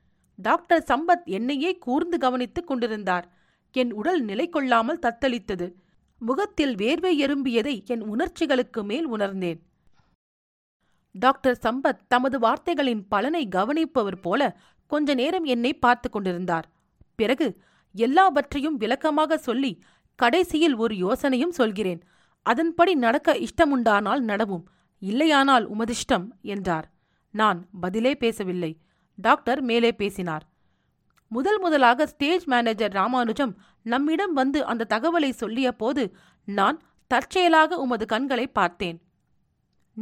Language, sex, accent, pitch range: Tamil, female, native, 205-305 Hz